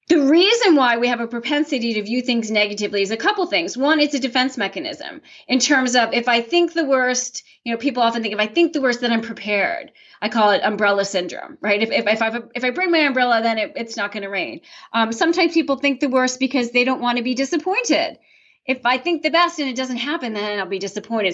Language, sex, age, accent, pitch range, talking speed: English, female, 30-49, American, 210-290 Hz, 245 wpm